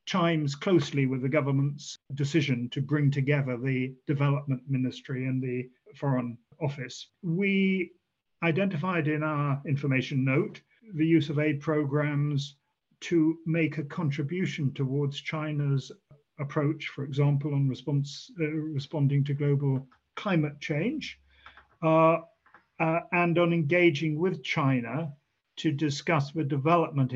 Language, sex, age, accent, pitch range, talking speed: English, male, 40-59, British, 140-160 Hz, 120 wpm